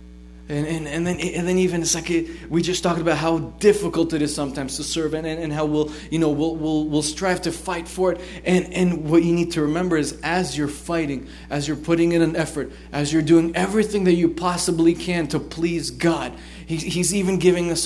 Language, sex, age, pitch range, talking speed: English, male, 20-39, 150-185 Hz, 230 wpm